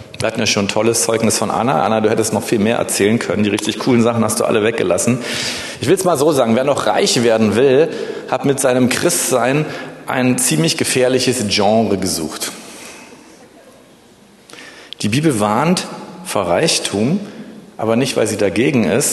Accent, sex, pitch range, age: German, male, 110-135 Hz, 40-59